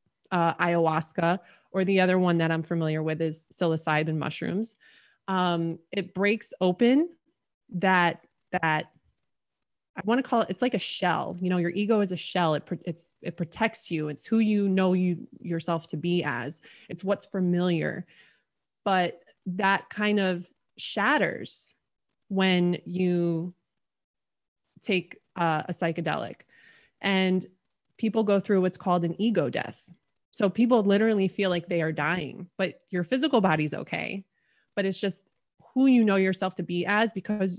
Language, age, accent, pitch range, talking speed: English, 20-39, American, 170-200 Hz, 150 wpm